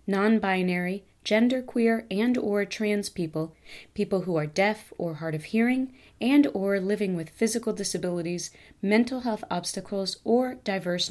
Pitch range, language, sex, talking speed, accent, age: 175-230 Hz, English, female, 135 wpm, American, 30-49